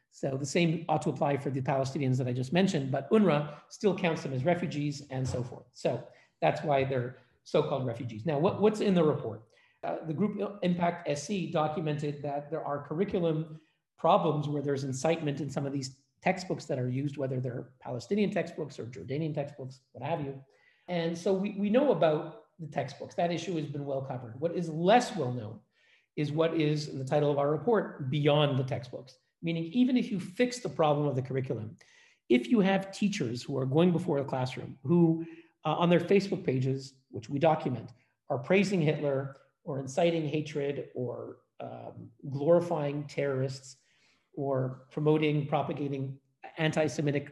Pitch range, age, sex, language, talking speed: 135-170 Hz, 40-59, male, English, 175 wpm